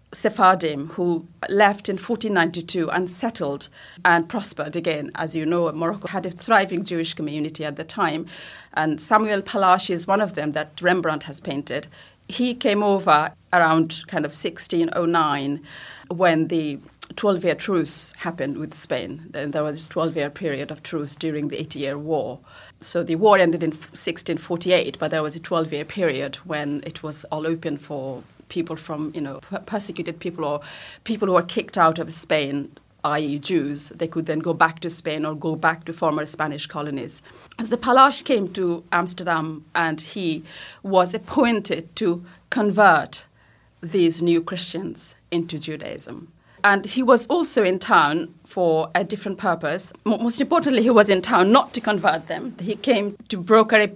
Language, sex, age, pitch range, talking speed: English, female, 30-49, 155-195 Hz, 165 wpm